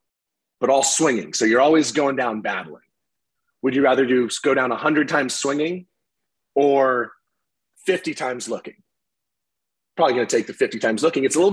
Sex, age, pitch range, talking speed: male, 30-49, 125-155 Hz, 175 wpm